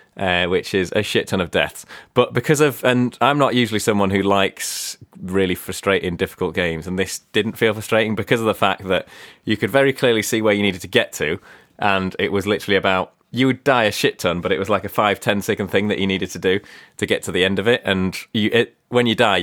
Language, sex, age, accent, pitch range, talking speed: English, male, 30-49, British, 95-115 Hz, 245 wpm